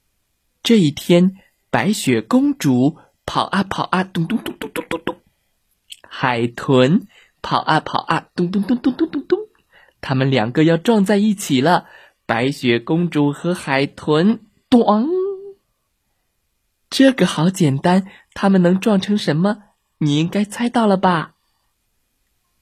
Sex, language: male, Chinese